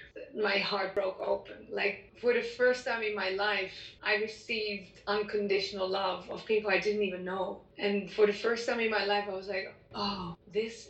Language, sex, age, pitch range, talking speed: Finnish, female, 30-49, 195-225 Hz, 195 wpm